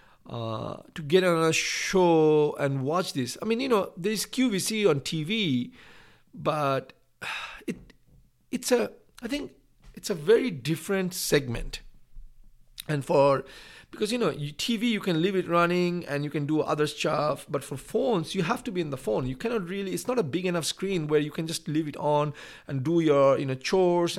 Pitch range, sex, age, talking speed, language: 125-175 Hz, male, 50-69, 190 wpm, English